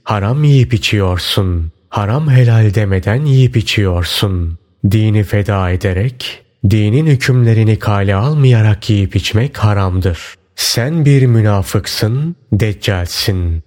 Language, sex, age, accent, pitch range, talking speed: Turkish, male, 30-49, native, 100-120 Hz, 95 wpm